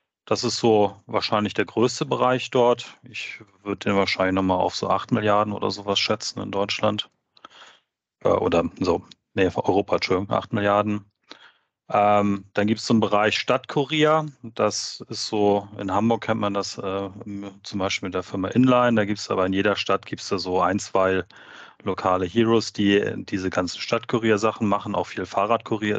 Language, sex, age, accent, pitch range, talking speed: German, male, 30-49, German, 100-120 Hz, 175 wpm